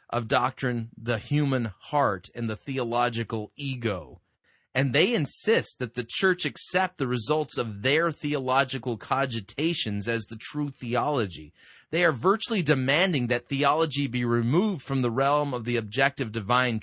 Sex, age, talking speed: male, 30-49, 145 wpm